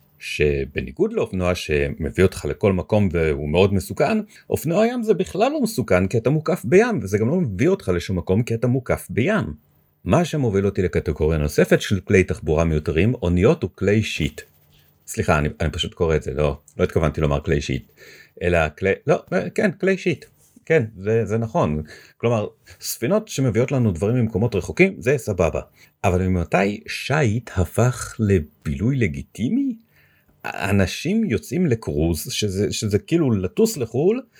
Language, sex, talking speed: Hebrew, male, 155 wpm